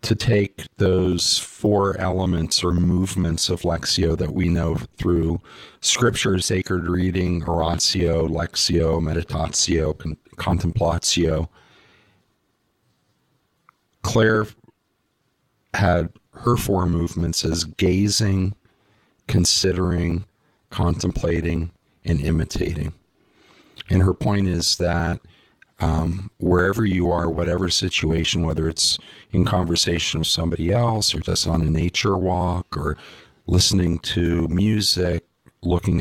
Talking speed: 100 wpm